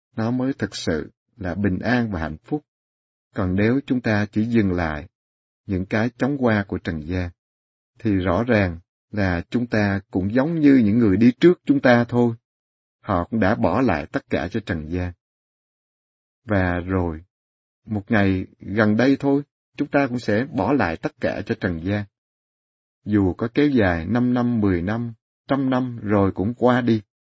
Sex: male